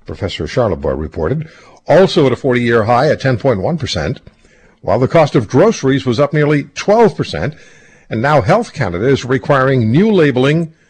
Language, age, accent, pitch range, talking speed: English, 60-79, American, 90-145 Hz, 150 wpm